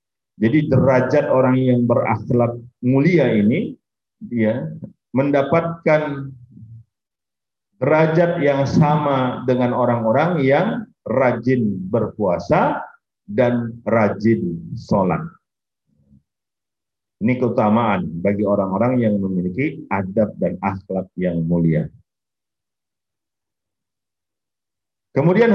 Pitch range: 110-170 Hz